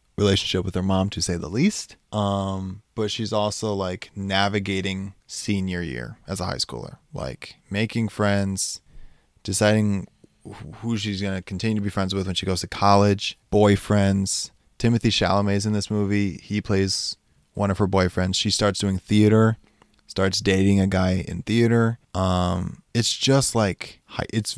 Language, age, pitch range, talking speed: English, 20-39, 95-110 Hz, 160 wpm